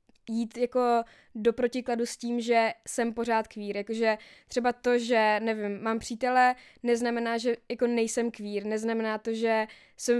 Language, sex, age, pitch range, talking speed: Czech, female, 20-39, 220-250 Hz, 155 wpm